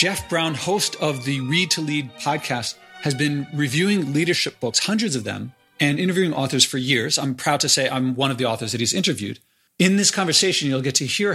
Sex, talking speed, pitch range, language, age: male, 215 wpm, 130-165 Hz, English, 40-59